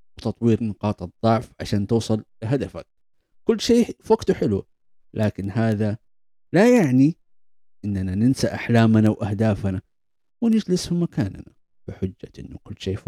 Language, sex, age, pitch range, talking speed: Arabic, male, 50-69, 95-130 Hz, 125 wpm